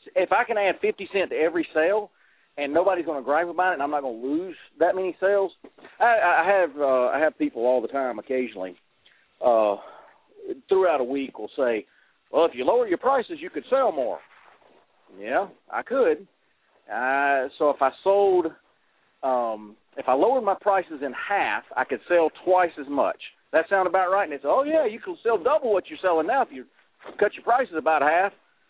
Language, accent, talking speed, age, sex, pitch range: English, American, 205 wpm, 40-59, male, 140-220 Hz